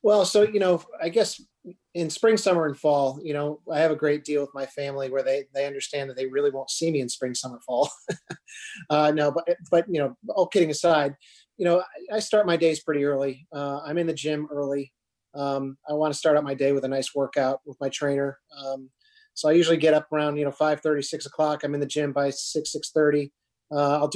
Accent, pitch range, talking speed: American, 145-165 Hz, 235 wpm